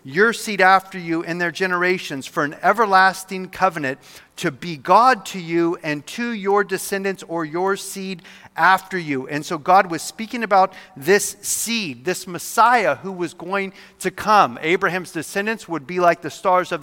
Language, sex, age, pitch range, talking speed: English, male, 40-59, 160-200 Hz, 170 wpm